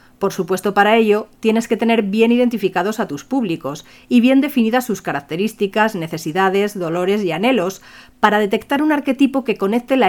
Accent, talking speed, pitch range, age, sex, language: Spanish, 165 wpm, 185-230 Hz, 40-59, female, Spanish